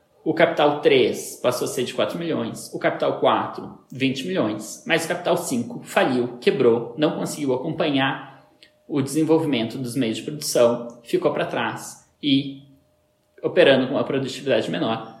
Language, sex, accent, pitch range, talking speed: Portuguese, male, Brazilian, 130-160 Hz, 150 wpm